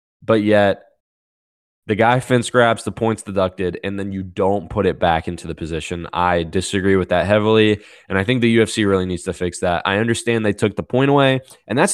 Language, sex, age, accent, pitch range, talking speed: English, male, 10-29, American, 90-120 Hz, 215 wpm